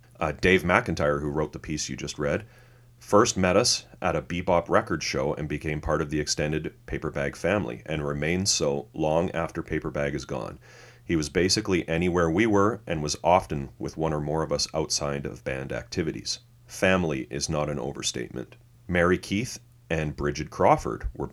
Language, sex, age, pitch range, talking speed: English, male, 30-49, 75-105 Hz, 180 wpm